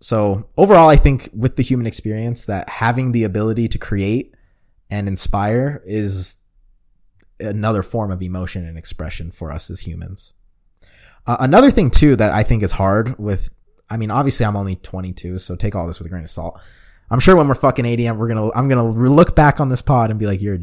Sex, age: male, 20-39